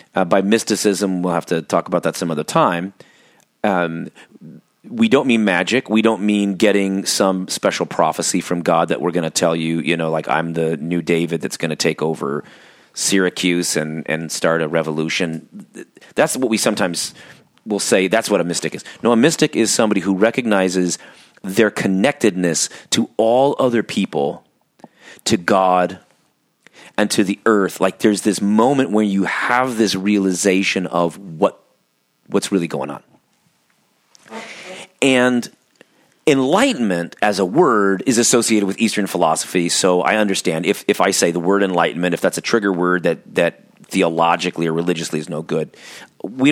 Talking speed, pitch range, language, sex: 165 wpm, 85-110 Hz, English, male